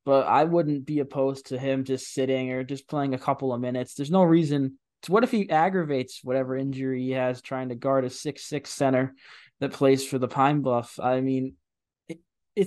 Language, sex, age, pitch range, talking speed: English, male, 20-39, 120-140 Hz, 205 wpm